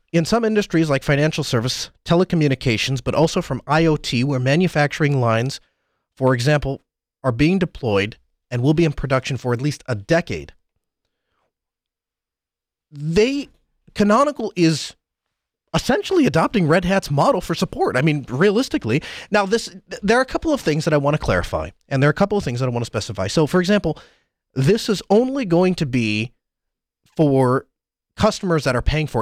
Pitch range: 125-175 Hz